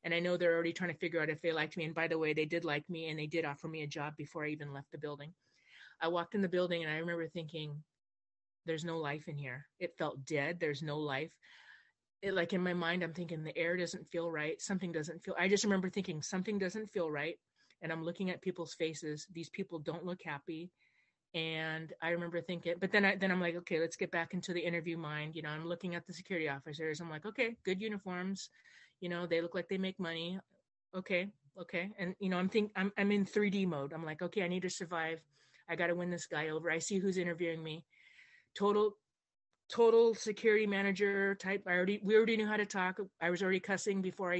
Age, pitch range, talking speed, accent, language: 30-49, 165-195 Hz, 235 wpm, American, English